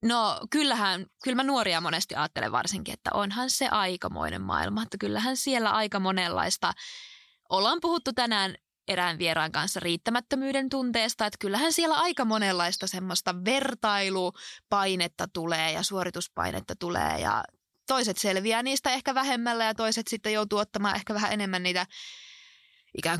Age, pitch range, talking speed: 20-39, 185-240 Hz, 135 wpm